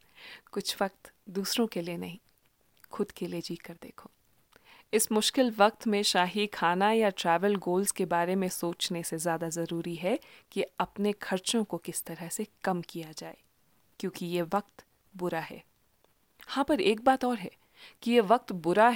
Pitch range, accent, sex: 175-240 Hz, native, female